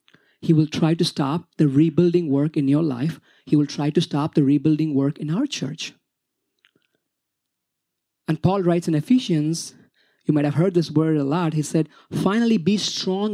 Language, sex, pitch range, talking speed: English, male, 150-180 Hz, 180 wpm